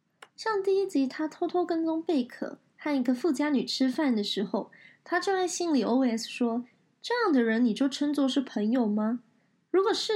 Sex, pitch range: female, 235-315 Hz